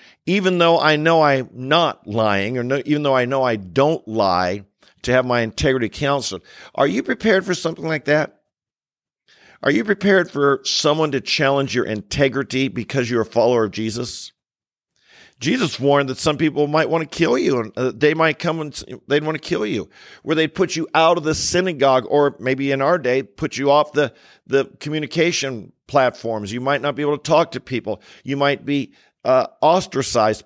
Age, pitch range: 50-69, 125-155 Hz